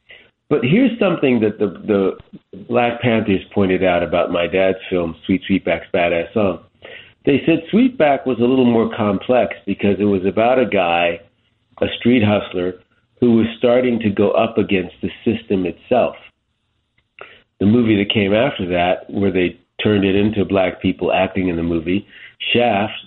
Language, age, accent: English, 50-69, American